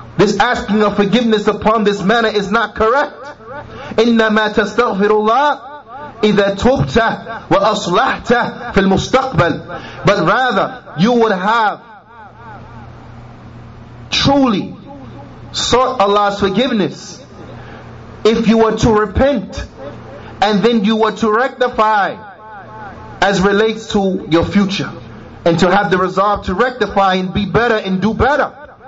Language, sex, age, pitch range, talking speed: English, male, 30-49, 140-220 Hz, 110 wpm